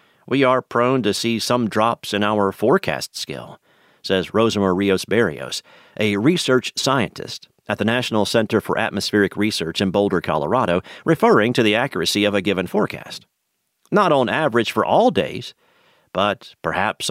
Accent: American